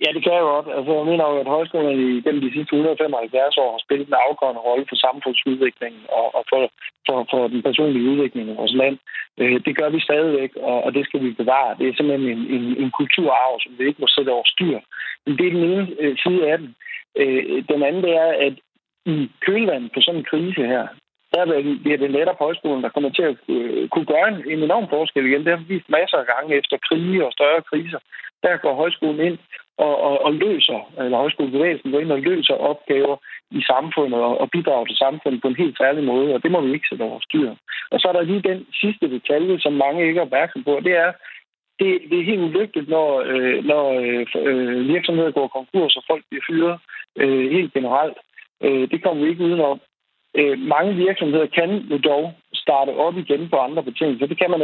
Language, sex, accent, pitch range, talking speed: Danish, male, native, 135-170 Hz, 205 wpm